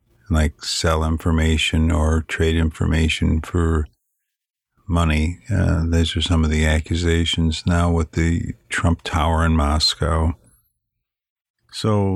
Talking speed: 115 wpm